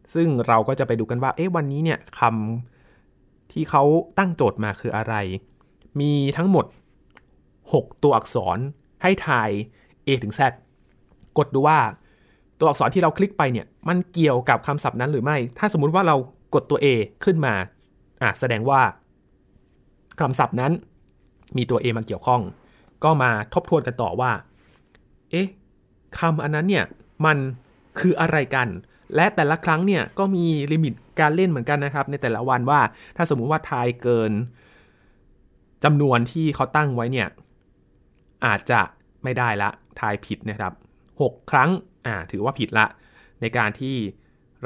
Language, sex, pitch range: Thai, male, 115-155 Hz